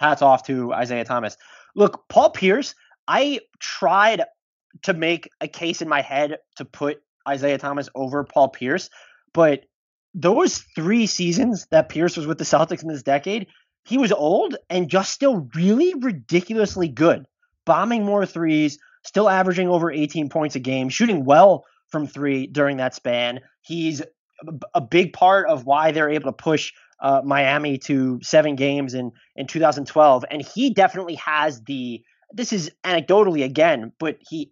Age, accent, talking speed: 20-39, American, 160 wpm